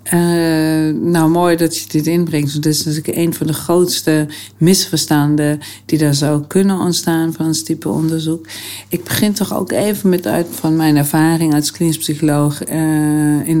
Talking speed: 170 wpm